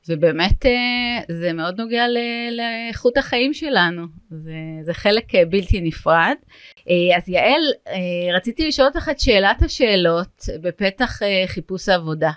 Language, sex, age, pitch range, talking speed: Hebrew, female, 30-49, 170-220 Hz, 105 wpm